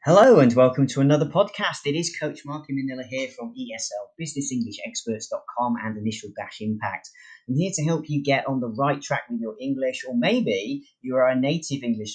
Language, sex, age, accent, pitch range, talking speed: English, male, 30-49, British, 110-155 Hz, 190 wpm